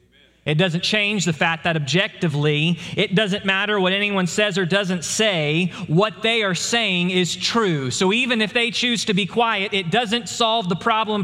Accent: American